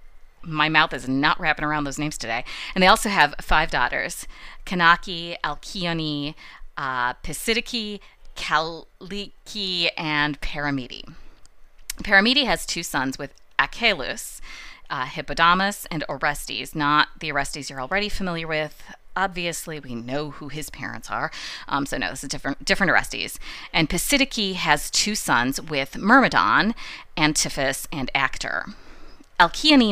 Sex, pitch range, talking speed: female, 150-200 Hz, 130 wpm